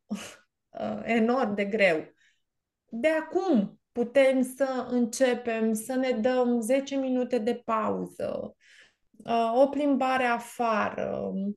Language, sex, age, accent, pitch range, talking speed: Romanian, female, 20-39, native, 235-275 Hz, 110 wpm